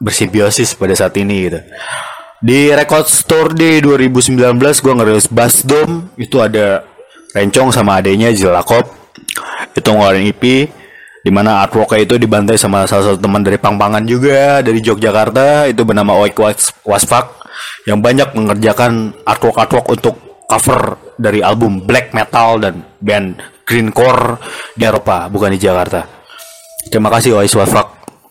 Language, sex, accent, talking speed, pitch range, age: Indonesian, male, native, 130 wpm, 105-130 Hz, 30-49